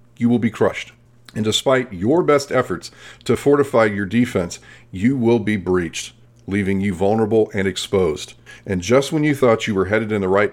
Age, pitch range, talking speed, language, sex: 40-59, 100-125 Hz, 190 wpm, English, male